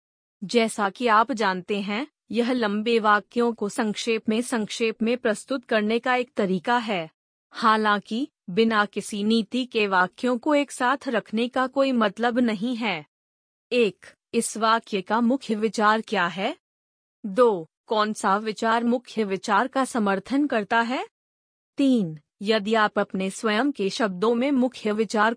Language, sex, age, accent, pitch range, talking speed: Hindi, female, 30-49, native, 205-250 Hz, 145 wpm